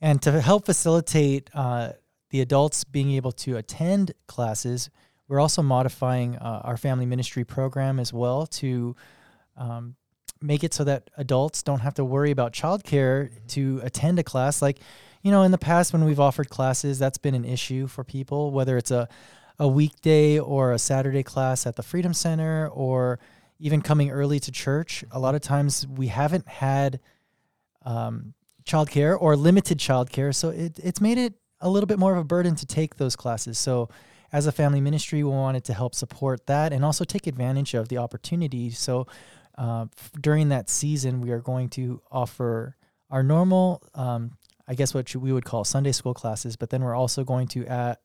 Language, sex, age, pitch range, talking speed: English, male, 20-39, 125-150 Hz, 190 wpm